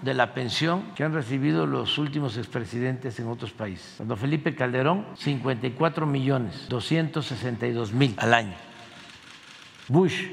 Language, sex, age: Spanish, male, 60-79